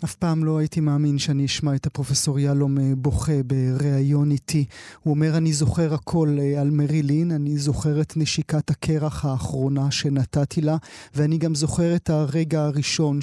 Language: Hebrew